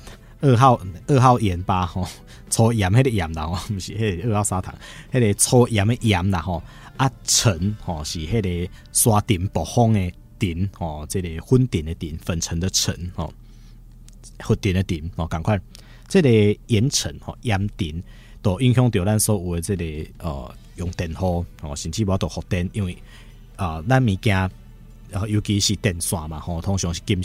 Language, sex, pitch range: Chinese, male, 90-115 Hz